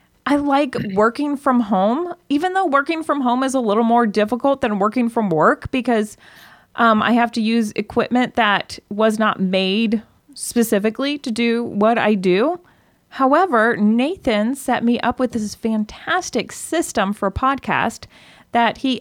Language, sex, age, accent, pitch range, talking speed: English, female, 30-49, American, 220-280 Hz, 160 wpm